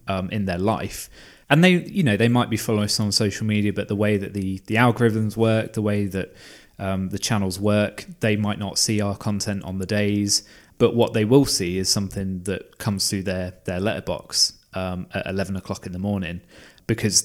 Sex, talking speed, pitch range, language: male, 210 wpm, 95-105 Hz, English